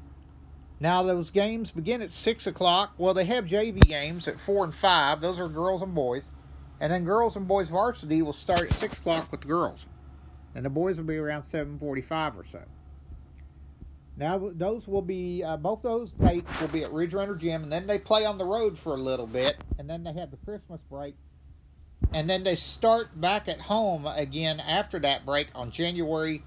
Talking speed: 200 wpm